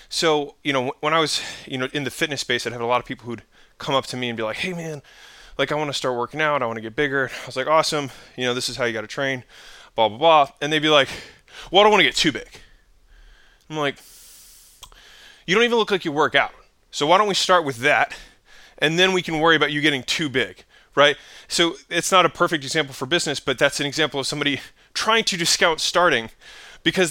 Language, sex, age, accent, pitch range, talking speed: English, male, 20-39, American, 135-170 Hz, 255 wpm